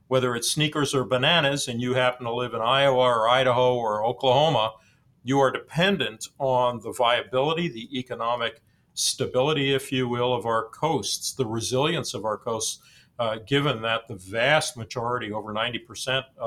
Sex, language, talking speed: male, English, 160 wpm